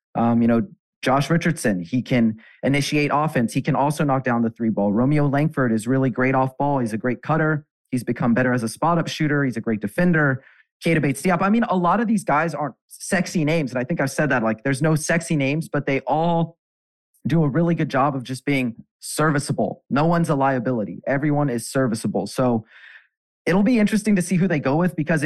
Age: 30-49